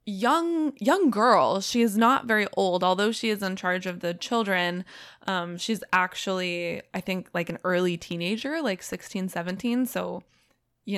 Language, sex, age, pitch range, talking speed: English, female, 20-39, 185-245 Hz, 165 wpm